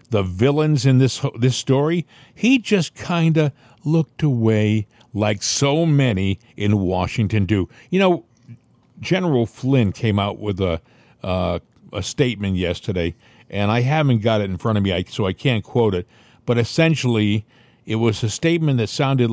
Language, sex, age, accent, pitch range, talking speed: English, male, 50-69, American, 105-140 Hz, 160 wpm